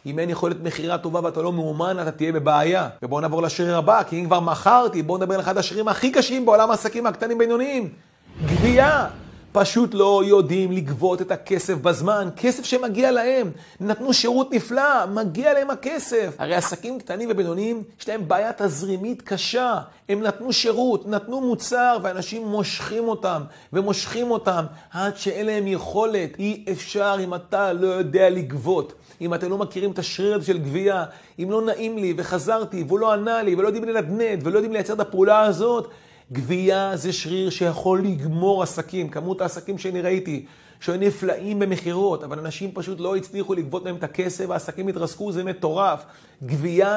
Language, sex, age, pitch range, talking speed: Hebrew, male, 40-59, 175-220 Hz, 165 wpm